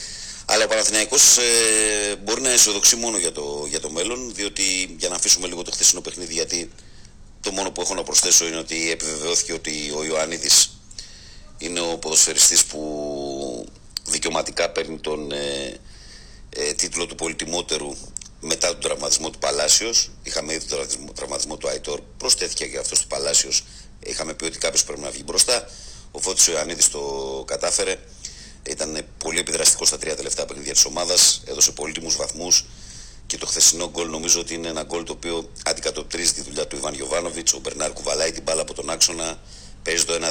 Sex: male